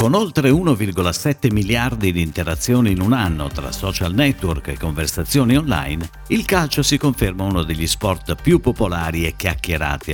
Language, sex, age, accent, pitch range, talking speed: Italian, male, 50-69, native, 85-135 Hz, 155 wpm